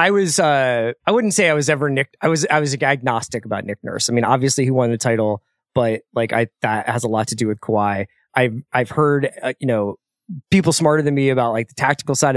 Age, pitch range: 20-39, 125-160 Hz